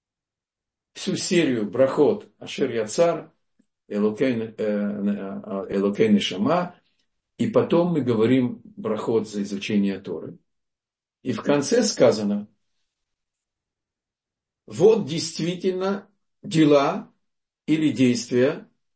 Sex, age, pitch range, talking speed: male, 50-69, 130-195 Hz, 80 wpm